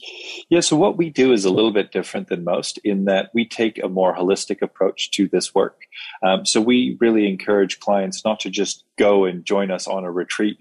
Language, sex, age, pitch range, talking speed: English, male, 30-49, 95-105 Hz, 220 wpm